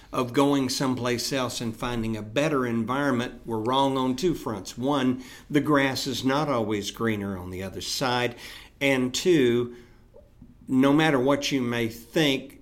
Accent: American